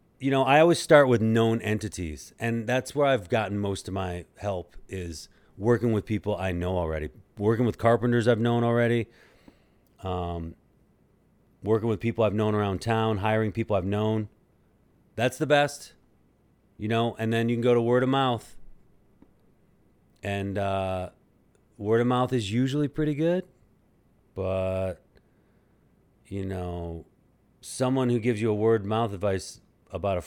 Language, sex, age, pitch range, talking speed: English, male, 40-59, 90-120 Hz, 155 wpm